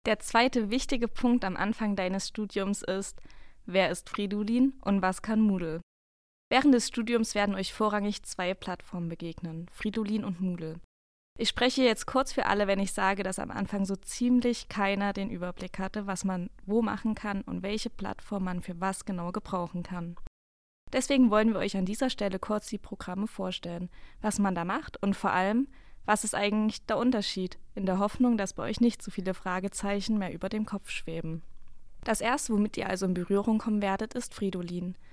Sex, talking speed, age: female, 185 wpm, 20-39